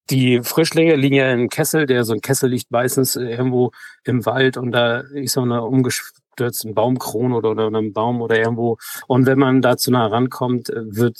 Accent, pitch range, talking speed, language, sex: German, 110-130 Hz, 200 wpm, German, male